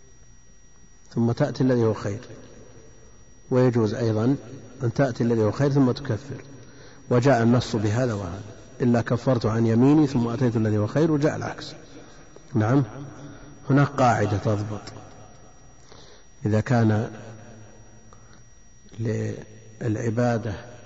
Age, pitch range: 50-69, 115-130 Hz